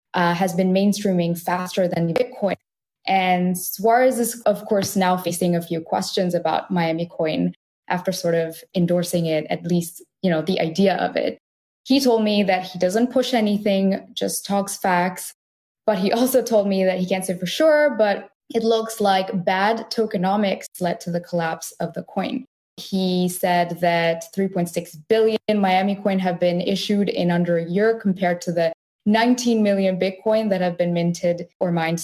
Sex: female